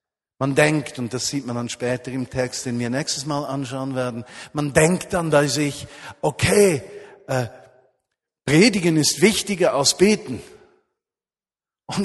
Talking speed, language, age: 145 wpm, German, 50-69